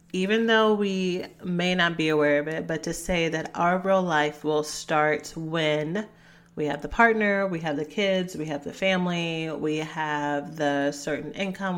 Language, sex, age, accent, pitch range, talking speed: English, female, 30-49, American, 155-185 Hz, 185 wpm